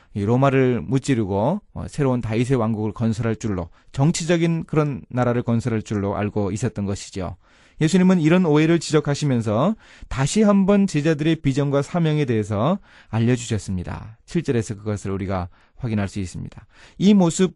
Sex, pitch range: male, 105-150 Hz